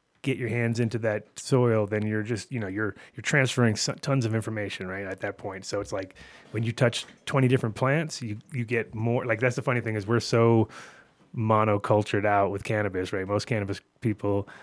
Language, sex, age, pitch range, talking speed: English, male, 30-49, 105-125 Hz, 210 wpm